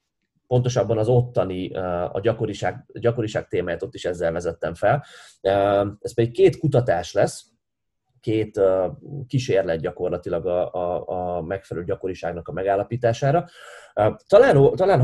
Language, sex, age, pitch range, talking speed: Hungarian, male, 20-39, 95-125 Hz, 115 wpm